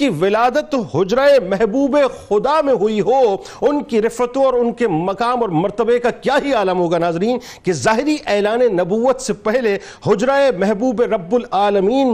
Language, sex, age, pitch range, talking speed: Urdu, male, 50-69, 215-270 Hz, 165 wpm